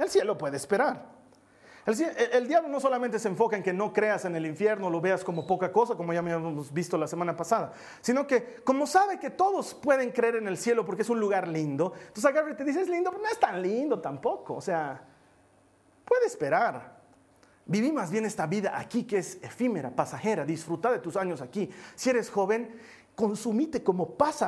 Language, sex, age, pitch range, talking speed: Spanish, male, 40-59, 175-245 Hz, 205 wpm